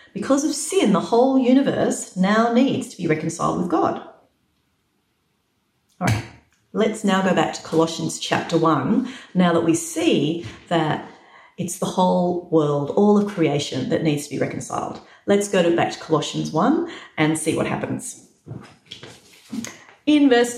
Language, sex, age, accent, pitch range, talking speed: English, female, 40-59, Australian, 160-220 Hz, 150 wpm